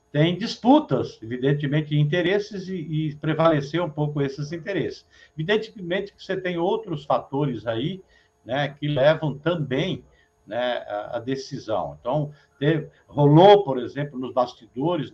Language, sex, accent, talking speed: Portuguese, male, Brazilian, 130 wpm